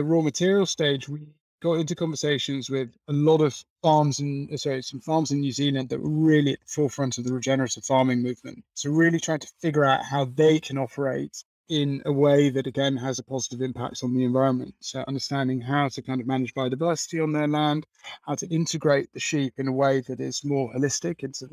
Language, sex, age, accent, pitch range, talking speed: English, male, 30-49, British, 135-150 Hz, 215 wpm